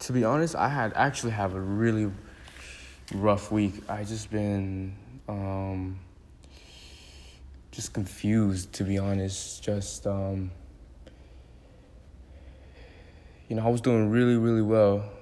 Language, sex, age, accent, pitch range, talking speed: English, male, 20-39, American, 90-105 Hz, 120 wpm